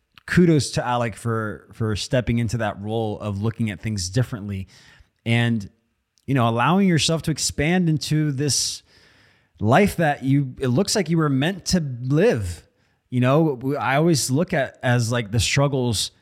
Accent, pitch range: American, 110-145 Hz